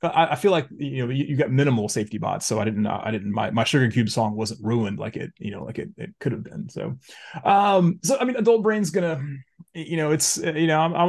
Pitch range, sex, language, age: 110-145 Hz, male, English, 30-49